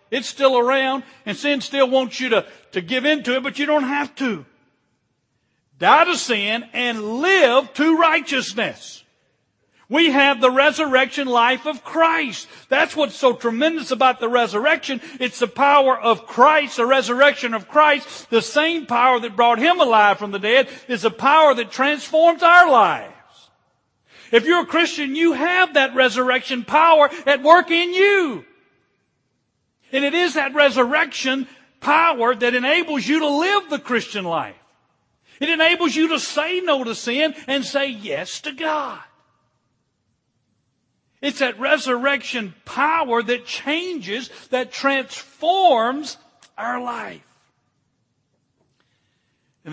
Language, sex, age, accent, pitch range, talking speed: English, male, 50-69, American, 200-295 Hz, 140 wpm